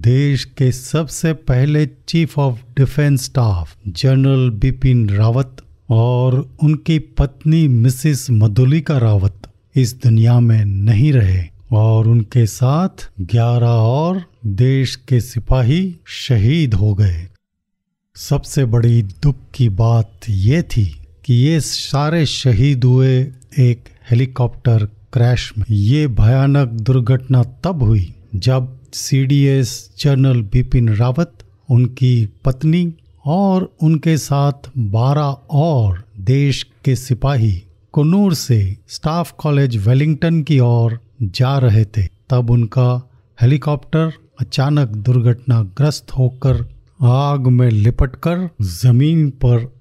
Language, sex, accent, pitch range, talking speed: Hindi, male, native, 115-140 Hz, 110 wpm